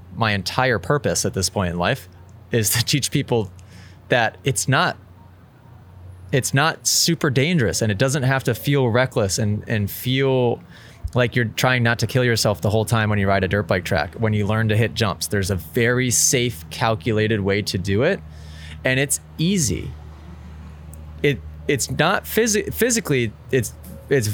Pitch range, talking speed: 100-130 Hz, 175 wpm